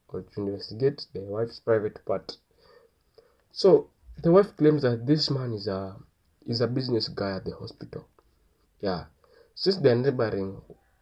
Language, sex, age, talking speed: English, male, 30-49, 140 wpm